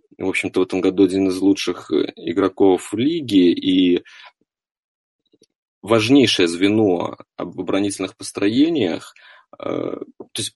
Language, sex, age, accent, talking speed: Russian, male, 30-49, native, 110 wpm